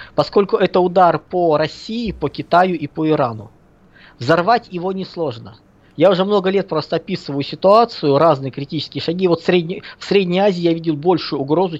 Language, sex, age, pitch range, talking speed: Russian, male, 20-39, 145-185 Hz, 170 wpm